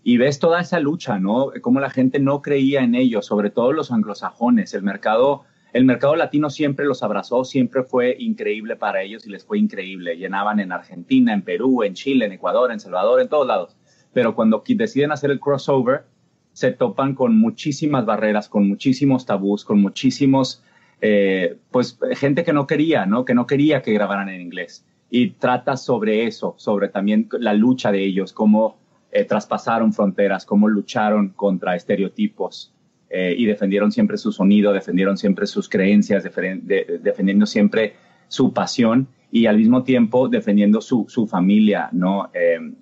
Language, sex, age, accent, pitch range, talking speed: Spanish, male, 30-49, Mexican, 105-155 Hz, 170 wpm